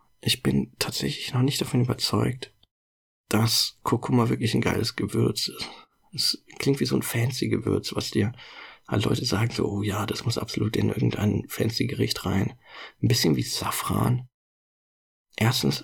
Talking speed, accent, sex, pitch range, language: 155 wpm, German, male, 105-125 Hz, German